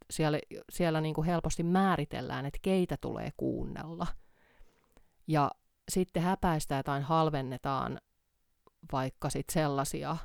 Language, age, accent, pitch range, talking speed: Finnish, 30-49, native, 145-175 Hz, 100 wpm